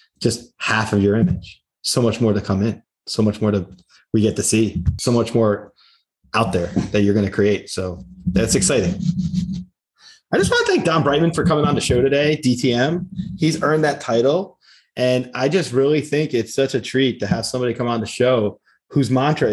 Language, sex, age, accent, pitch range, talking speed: English, male, 20-39, American, 100-130 Hz, 210 wpm